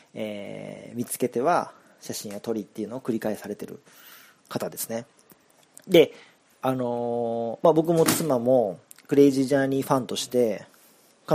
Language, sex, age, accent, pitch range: Japanese, male, 40-59, native, 115-165 Hz